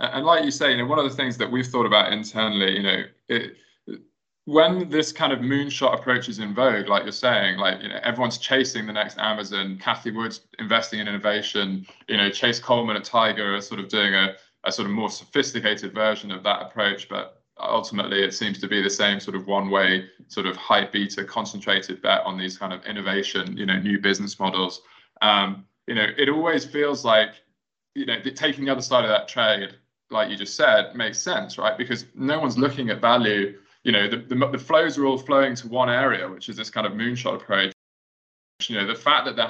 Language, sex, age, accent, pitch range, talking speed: English, male, 20-39, British, 100-130 Hz, 220 wpm